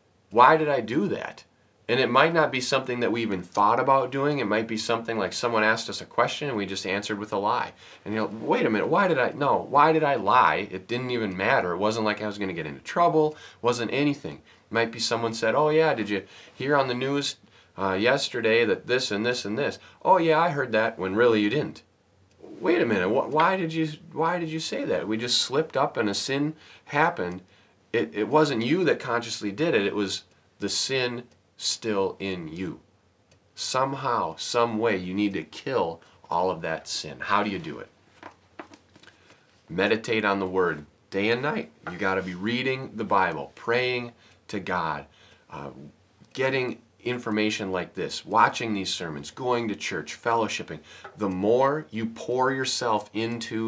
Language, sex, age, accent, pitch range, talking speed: English, male, 30-49, American, 100-130 Hz, 200 wpm